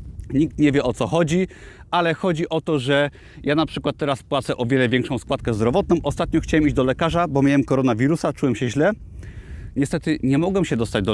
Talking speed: 205 wpm